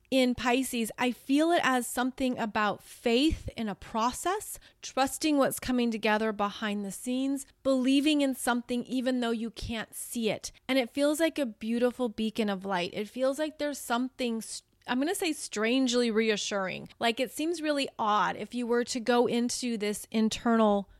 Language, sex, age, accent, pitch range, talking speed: English, female, 30-49, American, 220-265 Hz, 175 wpm